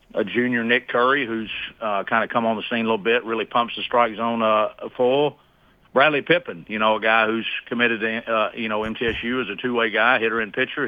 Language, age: English, 40-59